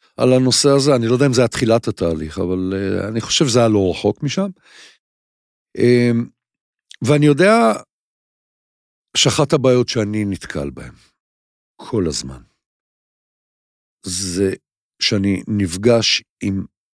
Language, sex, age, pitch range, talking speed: English, male, 50-69, 90-130 Hz, 100 wpm